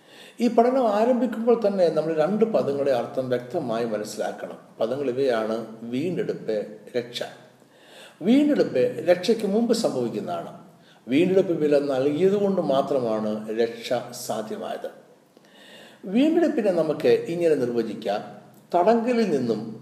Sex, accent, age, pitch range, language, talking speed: male, native, 60-79, 135-215 Hz, Malayalam, 95 wpm